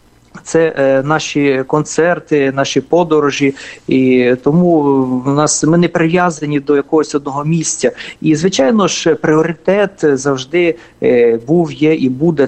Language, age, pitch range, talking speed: Russian, 40-59, 130-160 Hz, 120 wpm